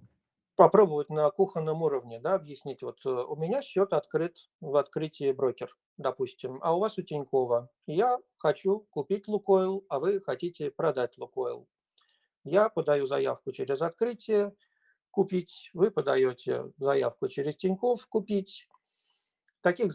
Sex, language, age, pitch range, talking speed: male, Russian, 50-69, 150-215 Hz, 125 wpm